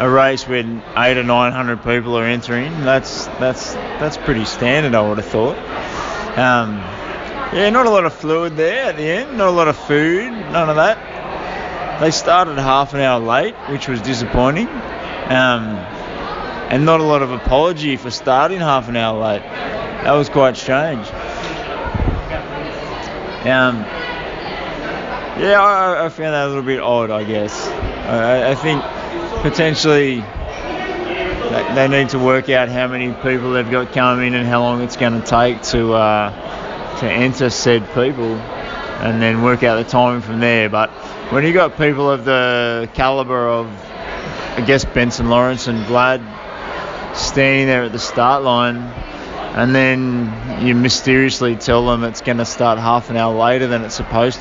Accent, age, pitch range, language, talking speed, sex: Australian, 20-39, 115-135 Hz, English, 165 wpm, male